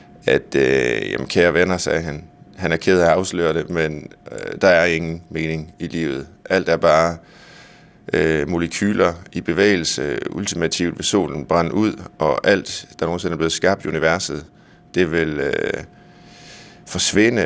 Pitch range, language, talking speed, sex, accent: 80-95 Hz, Danish, 160 wpm, male, native